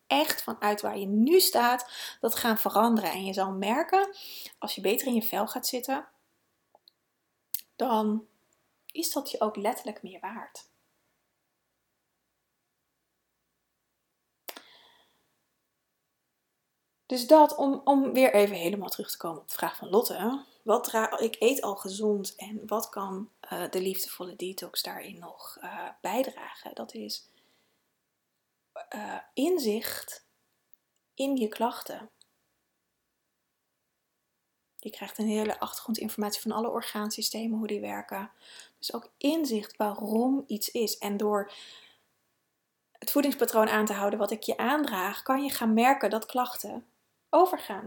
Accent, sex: Dutch, female